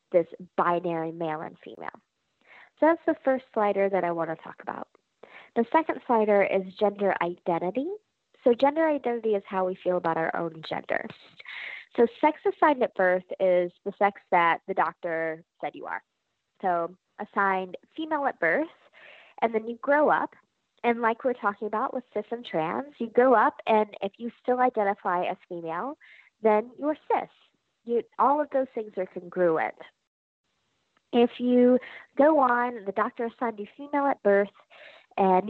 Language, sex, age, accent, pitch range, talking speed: English, female, 20-39, American, 190-260 Hz, 165 wpm